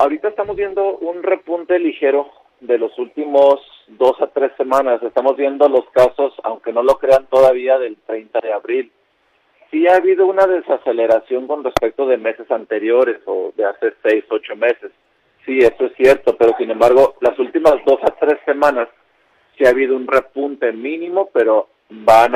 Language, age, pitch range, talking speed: Spanish, 40-59, 120-175 Hz, 170 wpm